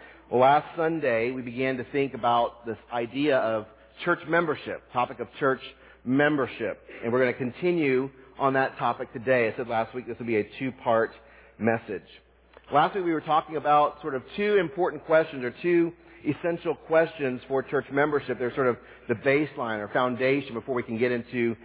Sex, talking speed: male, 185 wpm